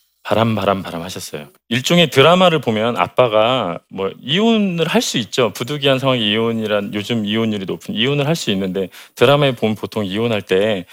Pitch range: 95-130 Hz